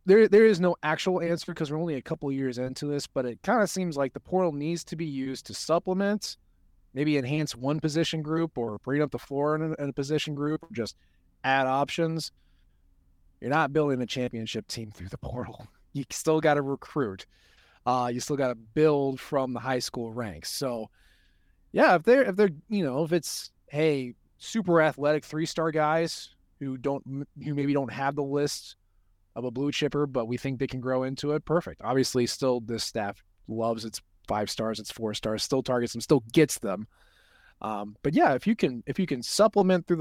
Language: English